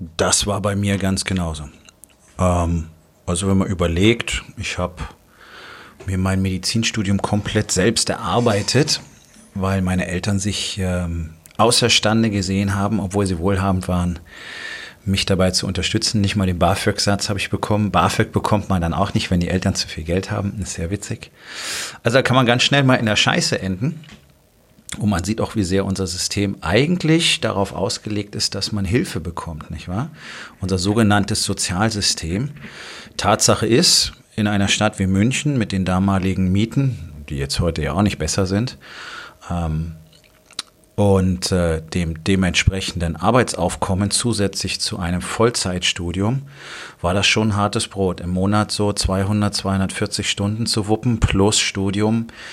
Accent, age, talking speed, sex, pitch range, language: German, 40-59, 155 wpm, male, 90-105 Hz, German